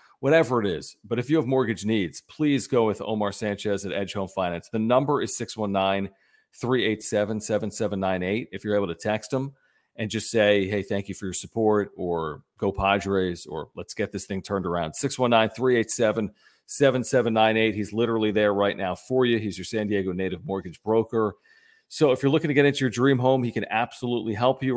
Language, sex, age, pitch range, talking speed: English, male, 40-59, 100-120 Hz, 185 wpm